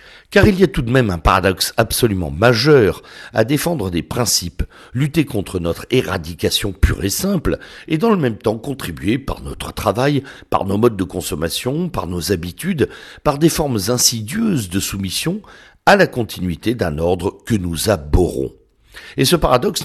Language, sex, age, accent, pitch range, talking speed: French, male, 60-79, French, 95-140 Hz, 170 wpm